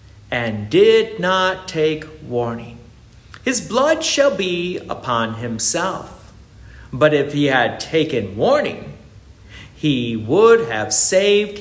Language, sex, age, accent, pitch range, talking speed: English, male, 50-69, American, 115-185 Hz, 110 wpm